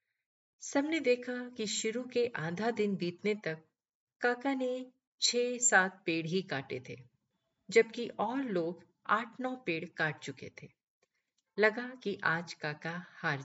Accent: native